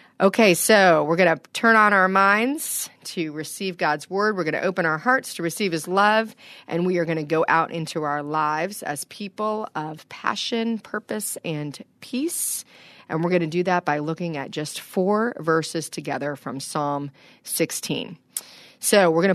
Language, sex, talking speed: English, female, 185 wpm